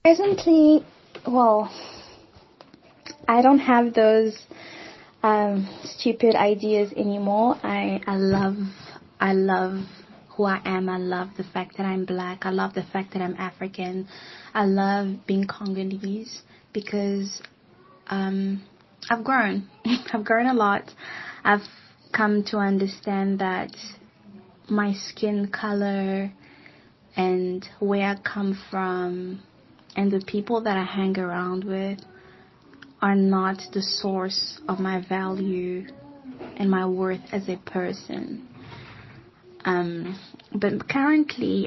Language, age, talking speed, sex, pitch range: English, 20-39, 115 wpm, female, 190-215 Hz